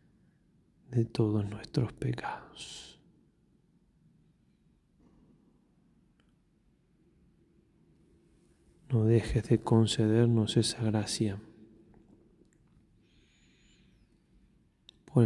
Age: 30-49